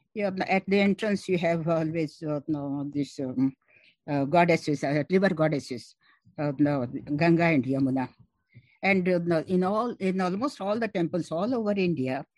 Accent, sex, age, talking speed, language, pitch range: Indian, female, 60-79, 160 wpm, English, 145-185 Hz